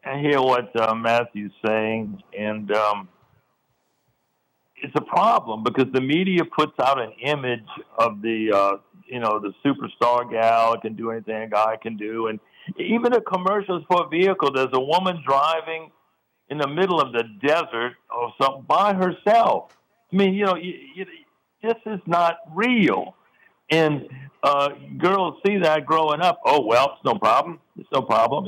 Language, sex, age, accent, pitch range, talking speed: English, male, 60-79, American, 115-150 Hz, 160 wpm